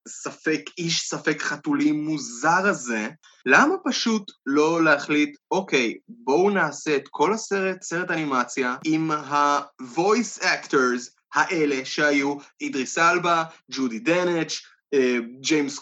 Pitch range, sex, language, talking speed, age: 155-220 Hz, male, Hebrew, 110 wpm, 20-39